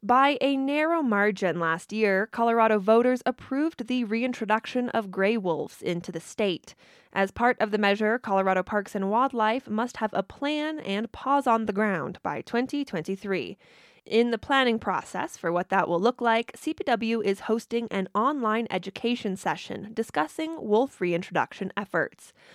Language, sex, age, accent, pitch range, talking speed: English, female, 20-39, American, 190-245 Hz, 155 wpm